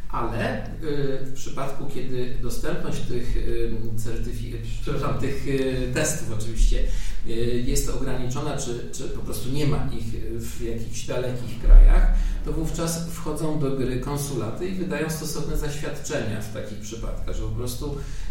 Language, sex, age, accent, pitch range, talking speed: Polish, male, 50-69, native, 120-160 Hz, 125 wpm